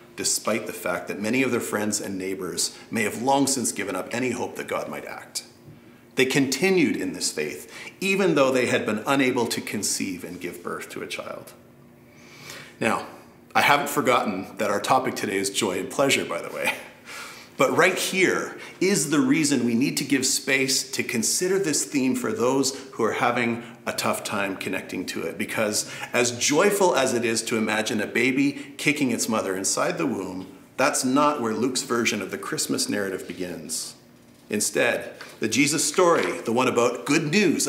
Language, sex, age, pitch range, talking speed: English, male, 40-59, 115-185 Hz, 185 wpm